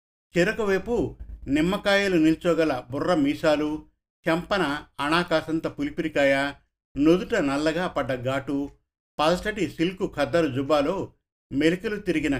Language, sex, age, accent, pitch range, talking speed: Telugu, male, 50-69, native, 140-175 Hz, 85 wpm